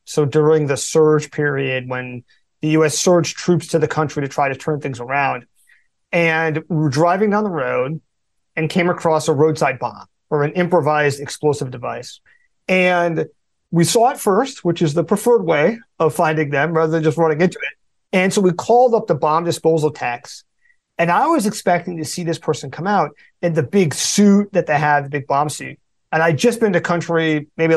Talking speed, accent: 200 wpm, American